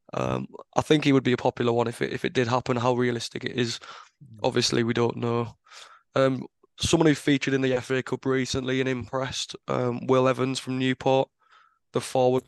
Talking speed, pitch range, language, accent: 195 wpm, 120-135 Hz, English, British